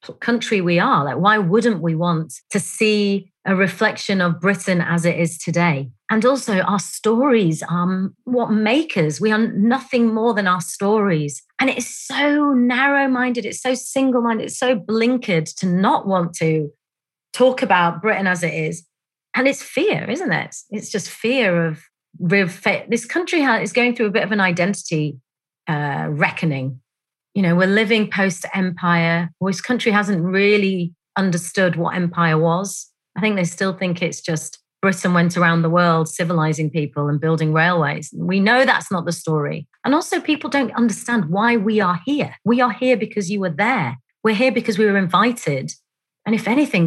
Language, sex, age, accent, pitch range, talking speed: English, female, 30-49, British, 170-230 Hz, 175 wpm